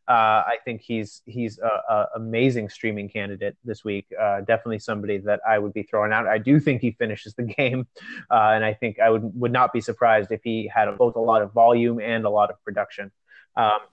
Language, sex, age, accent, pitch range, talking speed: English, male, 30-49, American, 110-130 Hz, 230 wpm